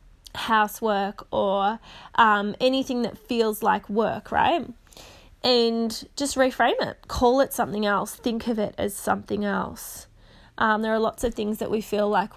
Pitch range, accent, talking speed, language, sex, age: 200-230 Hz, Australian, 160 wpm, English, female, 20-39